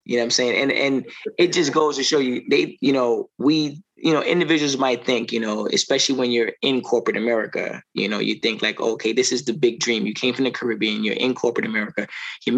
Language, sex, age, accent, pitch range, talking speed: English, male, 20-39, American, 115-145 Hz, 245 wpm